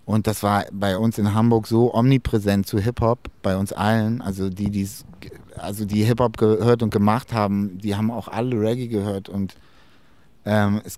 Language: German